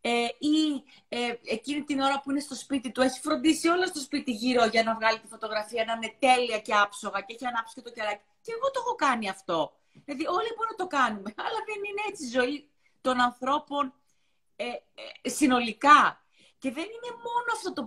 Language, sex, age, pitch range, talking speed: Greek, female, 30-49, 225-315 Hz, 205 wpm